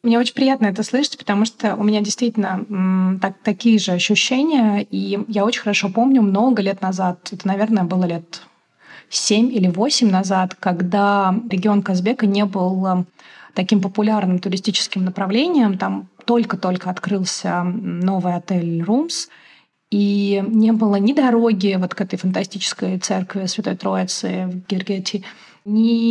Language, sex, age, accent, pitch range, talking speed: Russian, female, 20-39, native, 190-230 Hz, 140 wpm